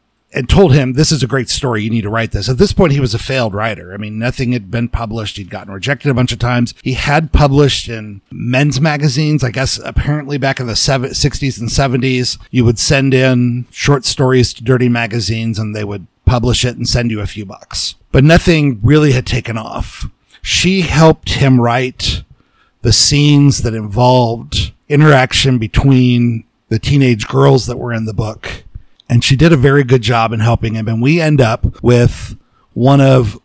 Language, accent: English, American